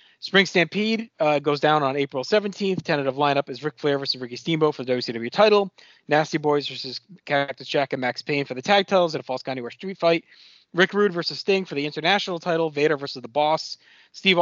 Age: 30-49